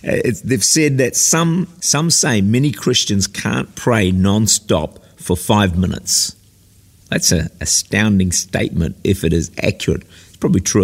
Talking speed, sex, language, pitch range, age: 145 wpm, male, English, 90-115 Hz, 50-69